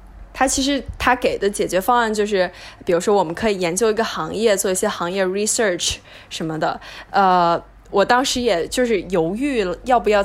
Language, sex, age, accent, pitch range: Chinese, female, 10-29, native, 185-225 Hz